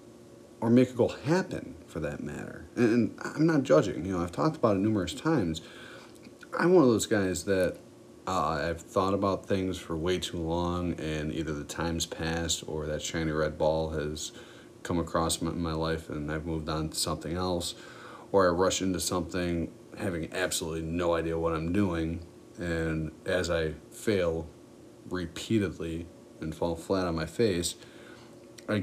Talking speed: 170 wpm